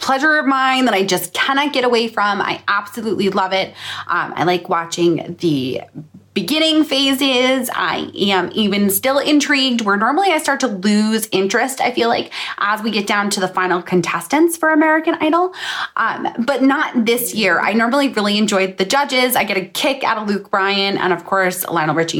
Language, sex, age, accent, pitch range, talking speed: English, female, 20-39, American, 200-280 Hz, 190 wpm